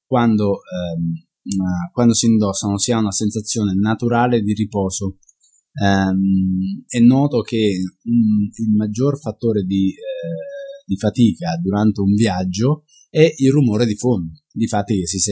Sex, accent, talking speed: male, native, 120 wpm